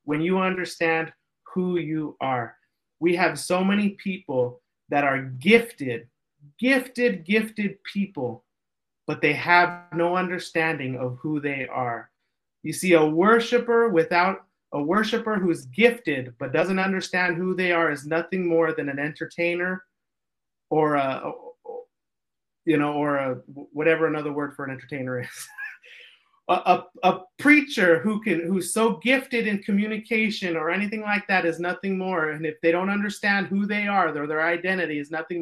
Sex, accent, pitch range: male, American, 150-195 Hz